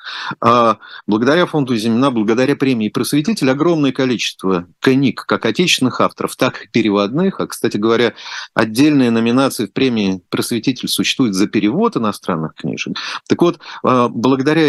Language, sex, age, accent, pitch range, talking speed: Russian, male, 50-69, native, 105-135 Hz, 125 wpm